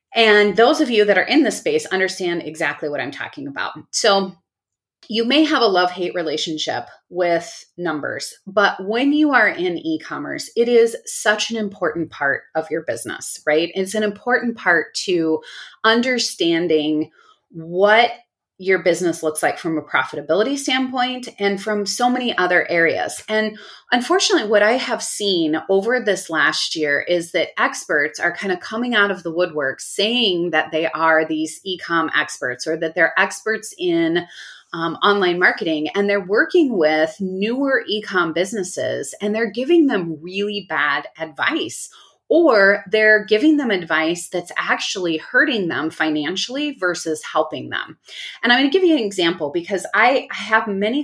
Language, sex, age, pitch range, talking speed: English, female, 30-49, 165-225 Hz, 160 wpm